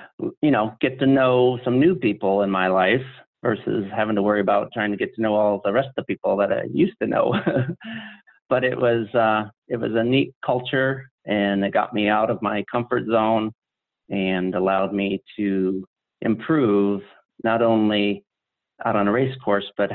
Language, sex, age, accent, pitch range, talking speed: English, male, 40-59, American, 100-120 Hz, 190 wpm